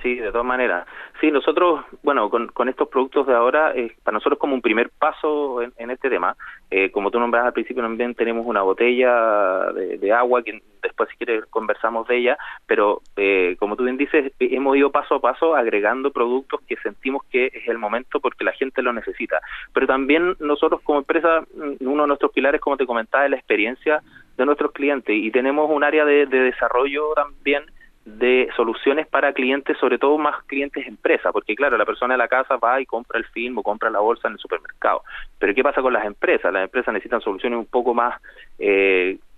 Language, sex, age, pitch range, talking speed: Spanish, male, 30-49, 115-145 Hz, 205 wpm